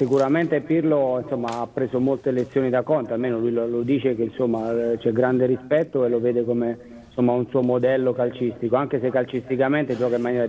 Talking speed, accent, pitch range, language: 190 wpm, native, 120-135 Hz, Italian